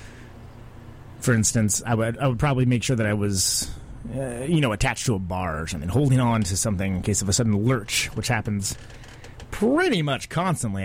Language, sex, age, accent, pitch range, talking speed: English, male, 30-49, American, 105-130 Hz, 200 wpm